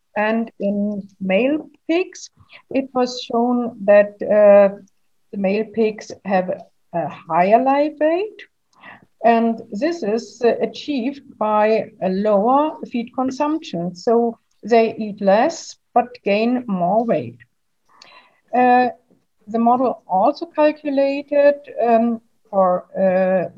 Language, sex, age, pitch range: Chinese, female, 60-79, 205-270 Hz